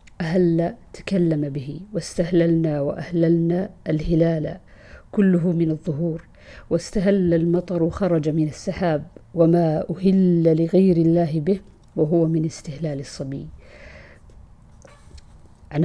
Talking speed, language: 90 wpm, Arabic